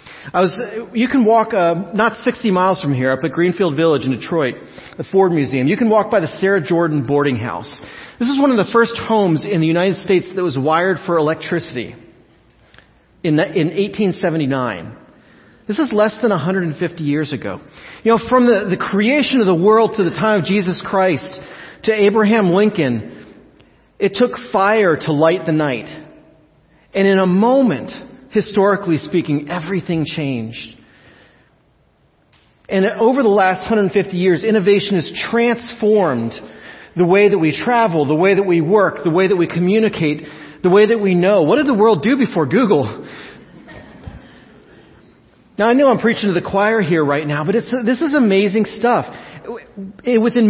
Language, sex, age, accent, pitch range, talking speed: English, male, 40-59, American, 160-220 Hz, 170 wpm